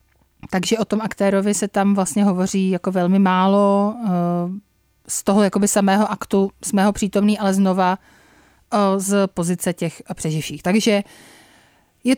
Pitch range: 175-205 Hz